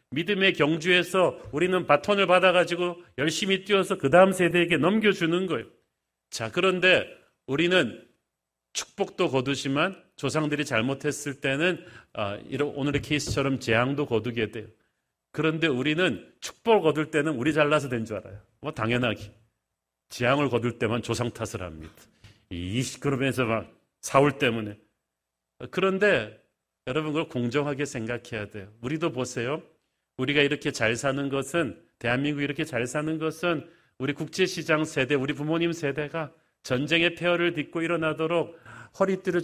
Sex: male